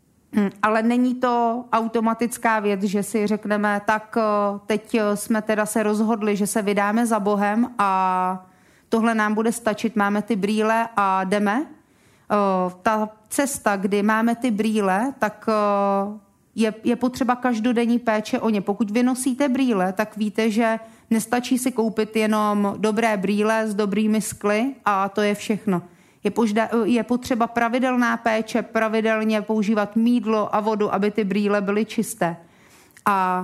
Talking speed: 140 wpm